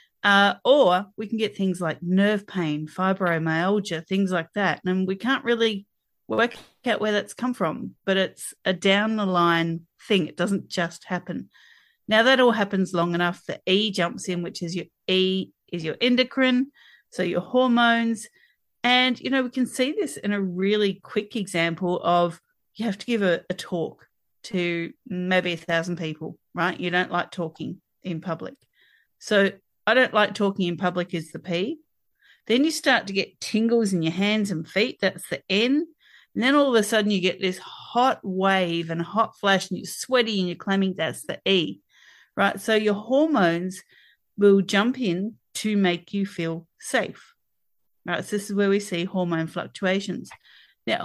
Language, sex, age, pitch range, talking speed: English, female, 40-59, 175-225 Hz, 180 wpm